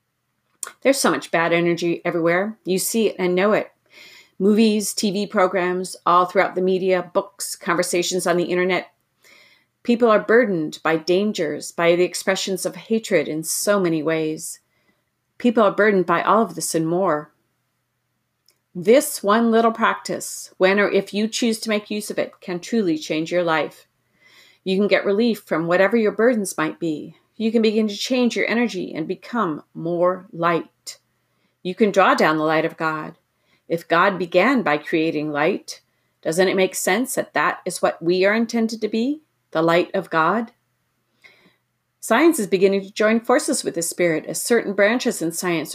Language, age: English, 40-59